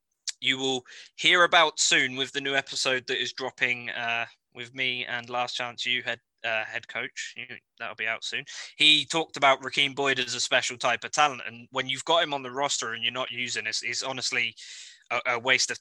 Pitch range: 130-185 Hz